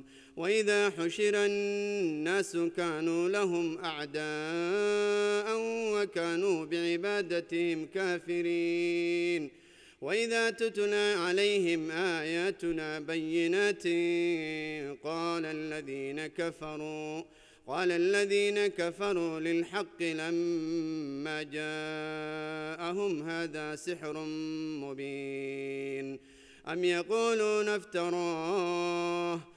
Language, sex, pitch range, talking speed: English, male, 155-205 Hz, 55 wpm